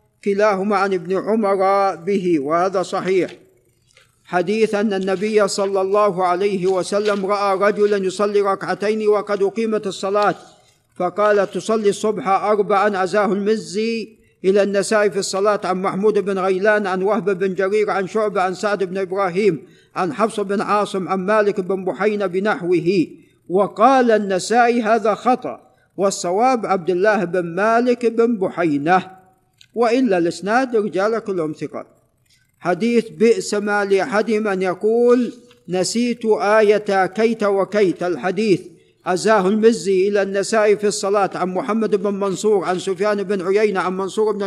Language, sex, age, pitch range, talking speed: Arabic, male, 50-69, 185-215 Hz, 130 wpm